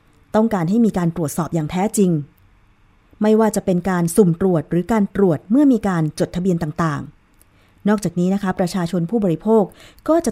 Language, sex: Thai, female